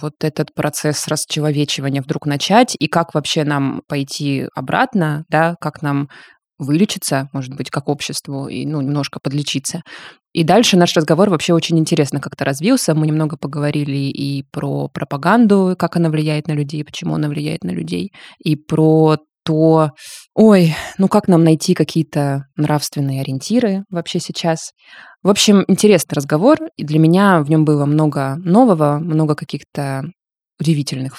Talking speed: 150 wpm